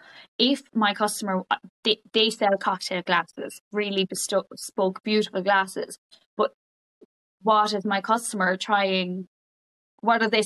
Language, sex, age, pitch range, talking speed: English, female, 10-29, 185-220 Hz, 120 wpm